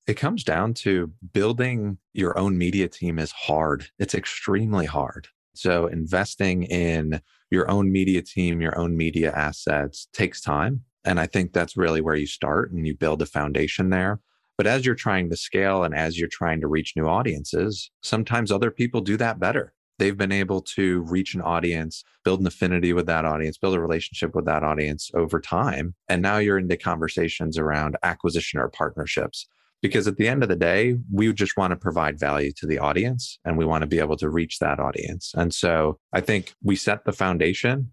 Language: English